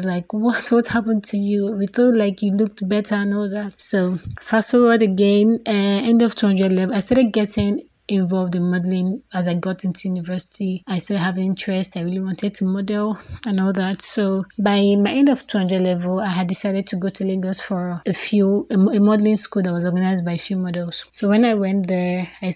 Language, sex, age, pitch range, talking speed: English, female, 20-39, 185-210 Hz, 210 wpm